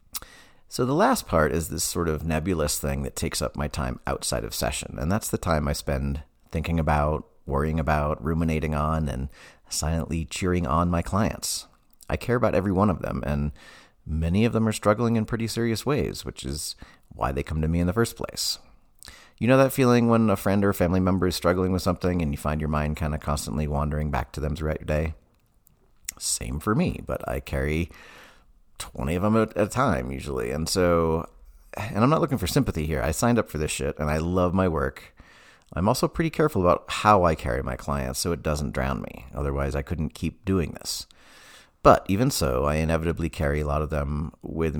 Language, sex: English, male